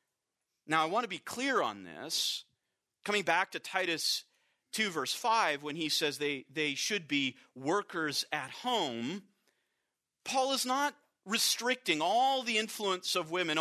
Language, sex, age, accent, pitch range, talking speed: English, male, 40-59, American, 155-235 Hz, 150 wpm